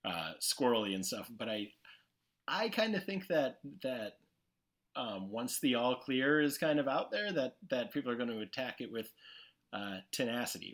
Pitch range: 95-130 Hz